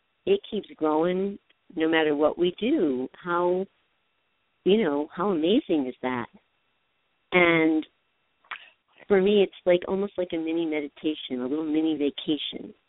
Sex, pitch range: female, 145-185 Hz